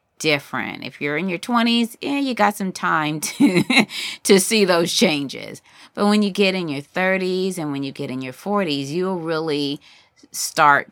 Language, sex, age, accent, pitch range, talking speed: English, female, 30-49, American, 145-185 Hz, 180 wpm